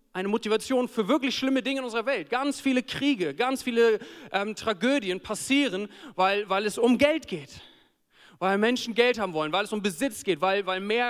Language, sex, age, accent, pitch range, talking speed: German, male, 40-59, German, 155-215 Hz, 195 wpm